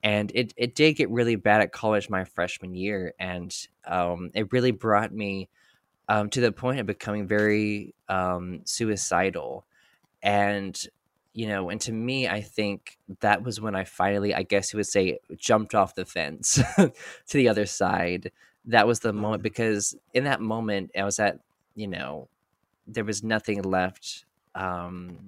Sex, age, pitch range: male, 20-39, 95-110 Hz